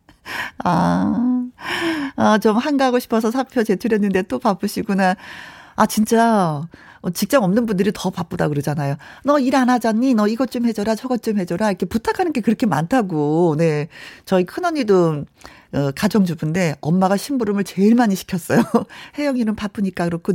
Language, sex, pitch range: Korean, female, 175-240 Hz